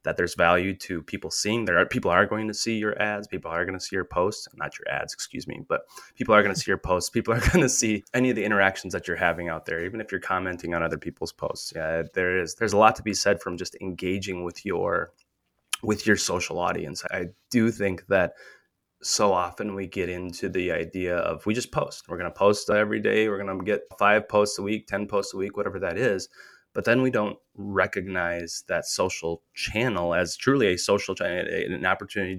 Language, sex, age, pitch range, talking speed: English, male, 20-39, 85-105 Hz, 235 wpm